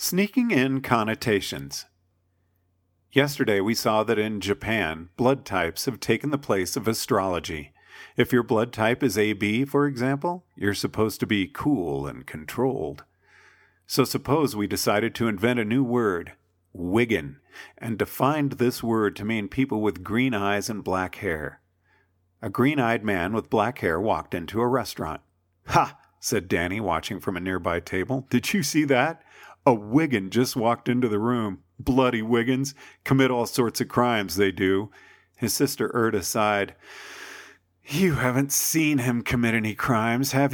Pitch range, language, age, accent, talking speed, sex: 100-130 Hz, English, 50-69, American, 155 wpm, male